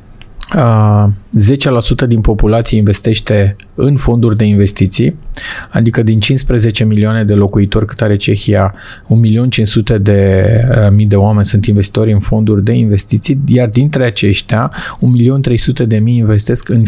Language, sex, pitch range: Romanian, male, 105-125 Hz